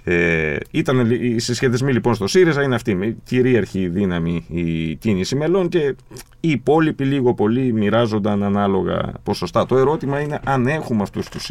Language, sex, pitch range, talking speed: Greek, male, 100-145 Hz, 155 wpm